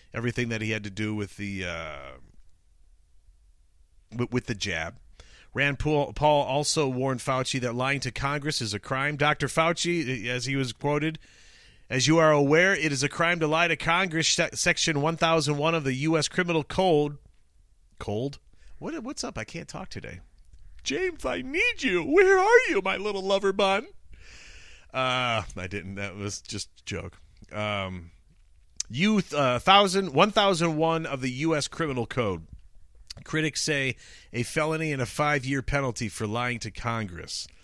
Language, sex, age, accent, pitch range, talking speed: English, male, 40-59, American, 110-160 Hz, 165 wpm